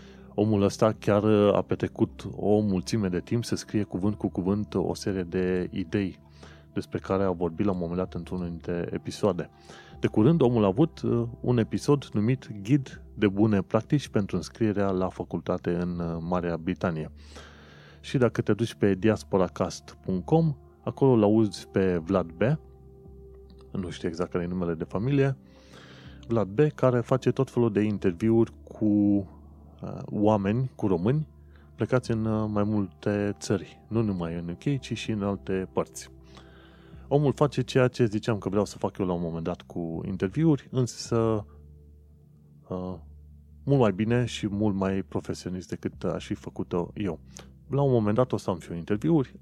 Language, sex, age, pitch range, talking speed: Romanian, male, 30-49, 85-115 Hz, 160 wpm